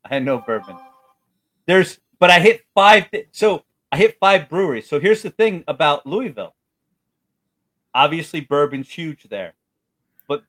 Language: English